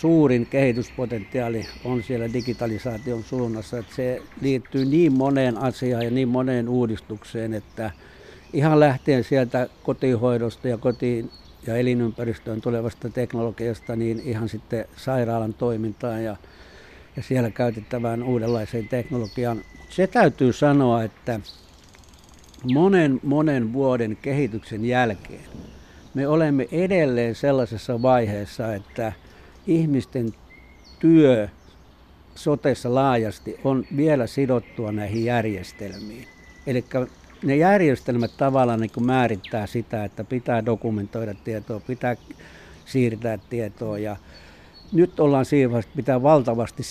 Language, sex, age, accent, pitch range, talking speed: Finnish, male, 60-79, native, 110-130 Hz, 105 wpm